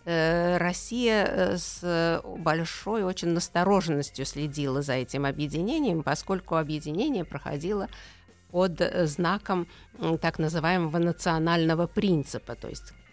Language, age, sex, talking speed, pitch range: Russian, 50-69, female, 90 wpm, 140-175 Hz